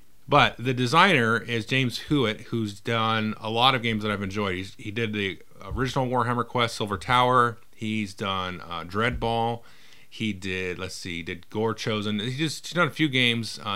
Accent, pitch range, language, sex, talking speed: American, 100-125 Hz, English, male, 190 wpm